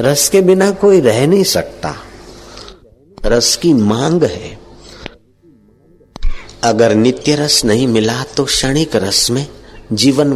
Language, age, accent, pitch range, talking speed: Hindi, 50-69, native, 110-150 Hz, 120 wpm